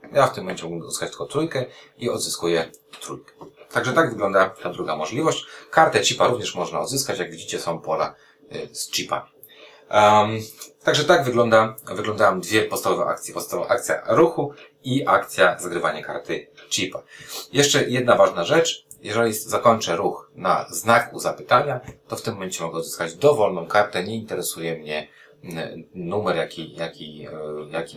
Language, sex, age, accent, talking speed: Polish, male, 30-49, native, 150 wpm